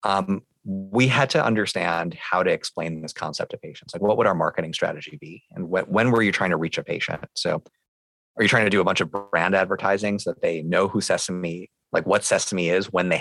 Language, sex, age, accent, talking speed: English, male, 30-49, American, 235 wpm